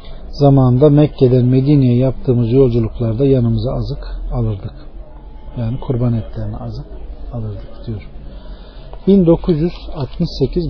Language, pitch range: Turkish, 120-155 Hz